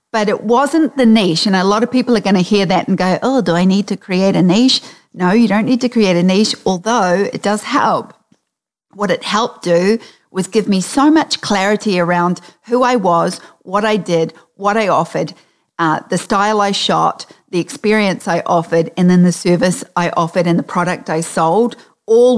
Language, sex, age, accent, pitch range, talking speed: English, female, 40-59, Australian, 180-225 Hz, 210 wpm